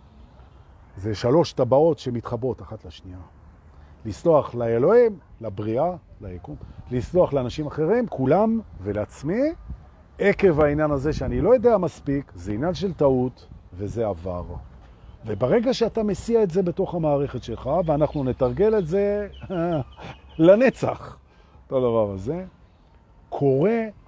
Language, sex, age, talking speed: Hebrew, male, 40-59, 110 wpm